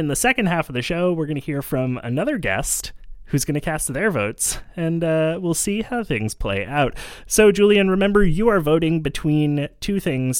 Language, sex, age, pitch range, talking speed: English, male, 20-39, 125-175 Hz, 215 wpm